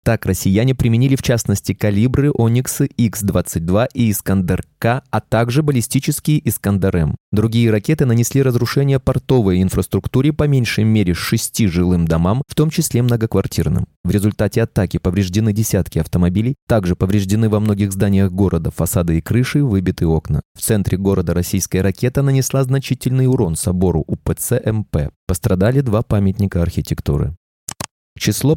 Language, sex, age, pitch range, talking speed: Russian, male, 20-39, 95-135 Hz, 130 wpm